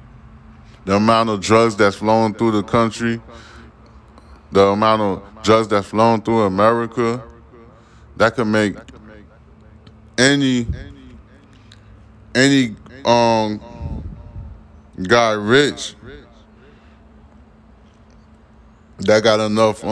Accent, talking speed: American, 85 wpm